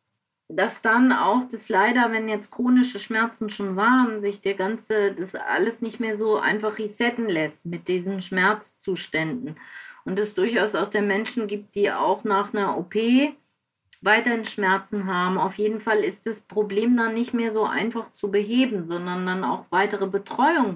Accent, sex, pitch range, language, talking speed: German, female, 195-225 Hz, German, 170 wpm